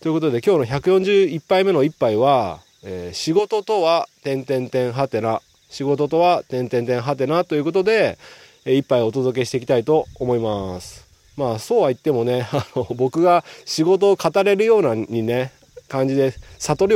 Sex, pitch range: male, 110-165 Hz